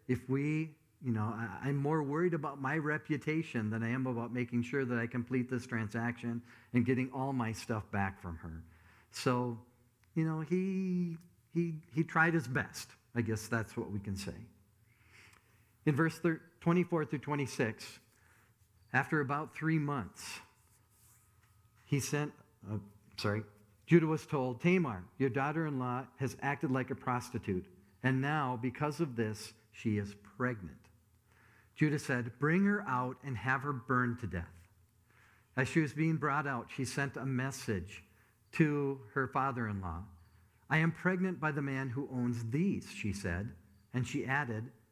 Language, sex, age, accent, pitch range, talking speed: English, male, 50-69, American, 105-145 Hz, 155 wpm